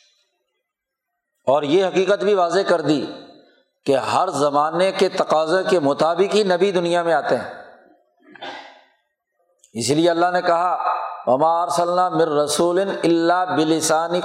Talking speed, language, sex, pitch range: 125 wpm, Urdu, male, 160-195 Hz